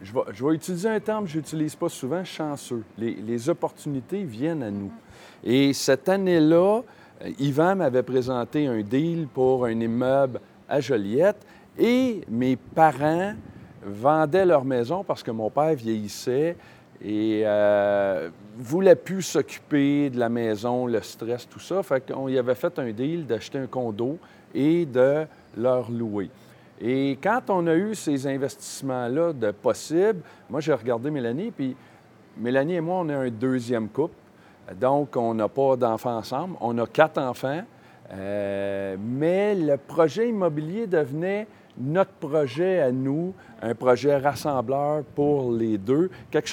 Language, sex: French, male